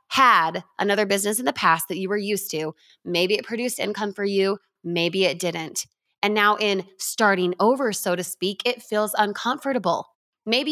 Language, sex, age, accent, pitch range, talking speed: English, female, 20-39, American, 195-265 Hz, 180 wpm